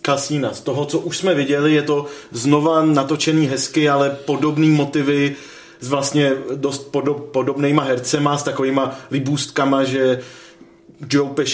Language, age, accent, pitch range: Czech, 30-49, native, 130-145 Hz